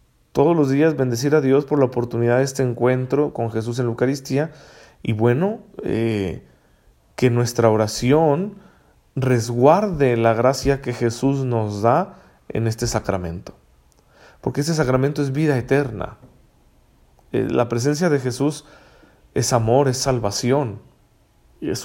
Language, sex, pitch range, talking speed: Spanish, male, 110-135 Hz, 135 wpm